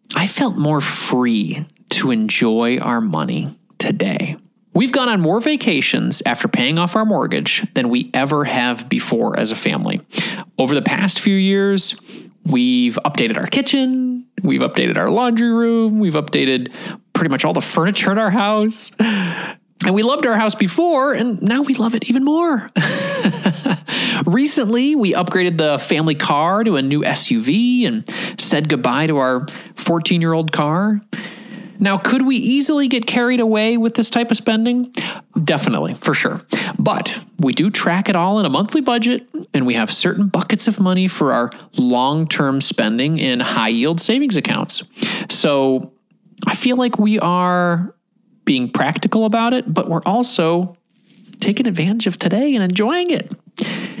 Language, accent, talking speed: English, American, 155 wpm